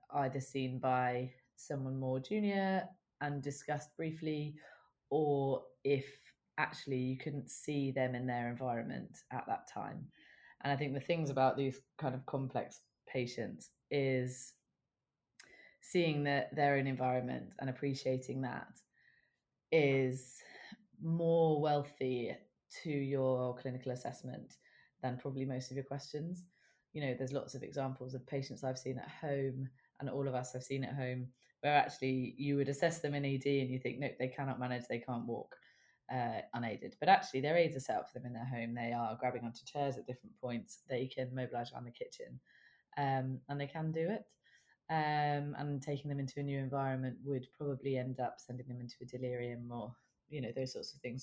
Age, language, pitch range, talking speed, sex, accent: 20-39, English, 125-145 Hz, 175 wpm, female, British